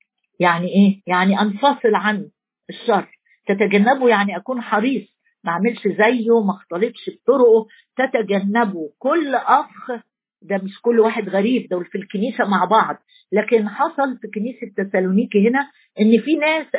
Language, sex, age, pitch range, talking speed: Arabic, female, 50-69, 200-260 Hz, 135 wpm